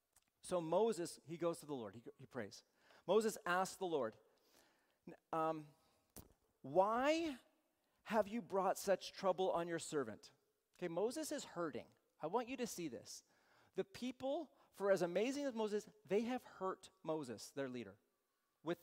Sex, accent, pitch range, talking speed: male, American, 150-205 Hz, 155 wpm